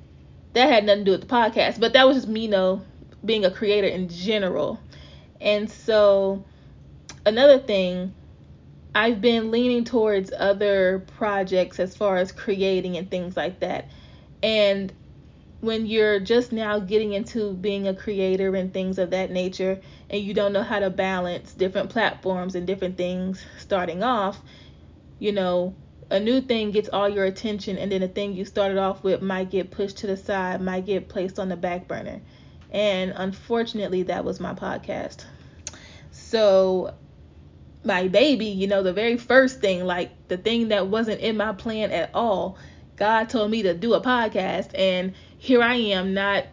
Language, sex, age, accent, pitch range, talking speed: English, female, 20-39, American, 185-215 Hz, 175 wpm